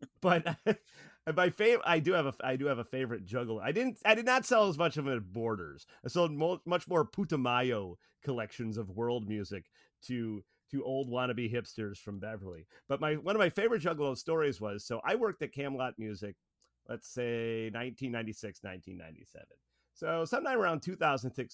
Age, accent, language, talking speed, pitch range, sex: 30-49, American, English, 185 wpm, 105-150 Hz, male